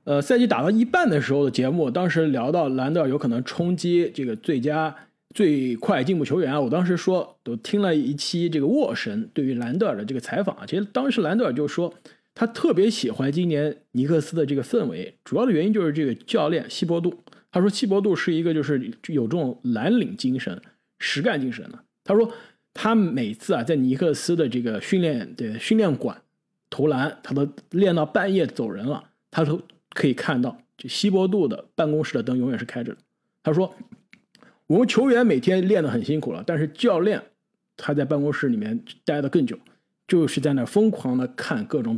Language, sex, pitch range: Chinese, male, 140-210 Hz